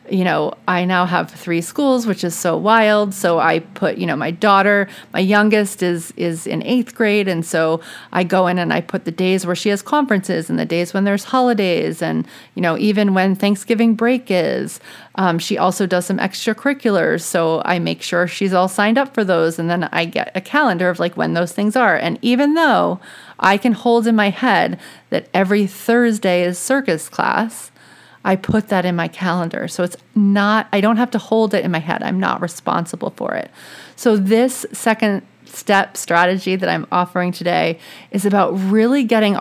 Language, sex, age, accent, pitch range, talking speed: English, female, 30-49, American, 180-220 Hz, 200 wpm